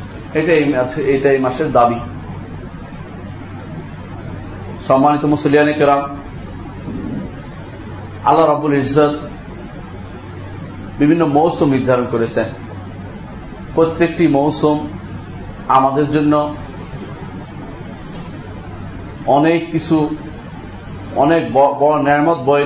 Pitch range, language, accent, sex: 120-150 Hz, Bengali, native, male